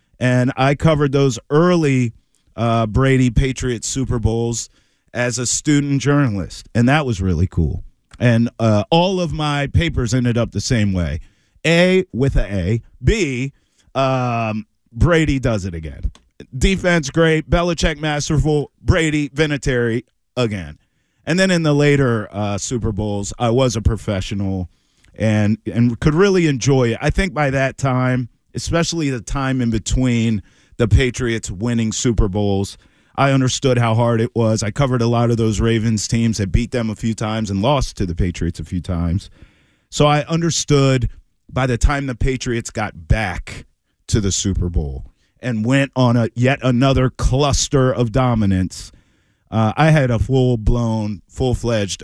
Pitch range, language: 105-135 Hz, English